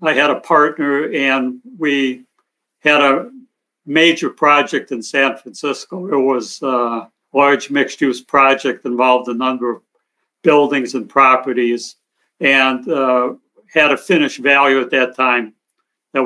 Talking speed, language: 135 wpm, English